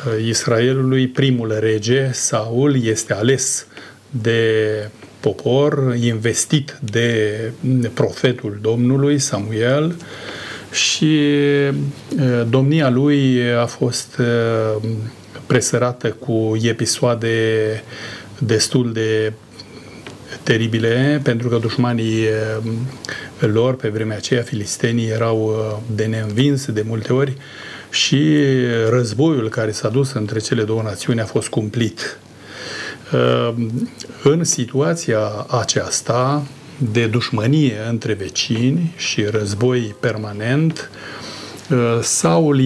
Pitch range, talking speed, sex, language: 110-135 Hz, 85 wpm, male, Romanian